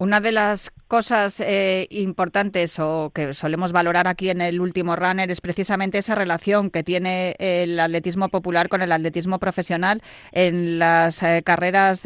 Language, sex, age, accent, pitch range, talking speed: Spanish, female, 30-49, Spanish, 185-220 Hz, 160 wpm